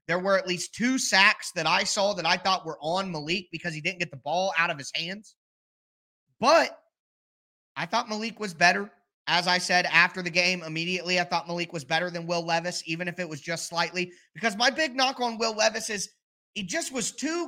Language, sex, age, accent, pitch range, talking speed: English, male, 30-49, American, 175-230 Hz, 220 wpm